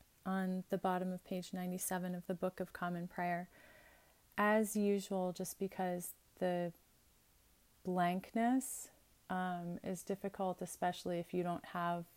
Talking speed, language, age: 130 wpm, English, 30-49